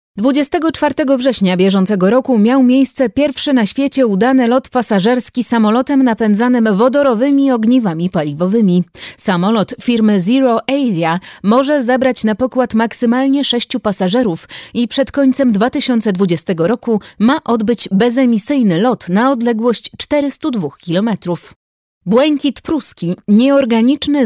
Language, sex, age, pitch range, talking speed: Polish, female, 30-49, 190-255 Hz, 110 wpm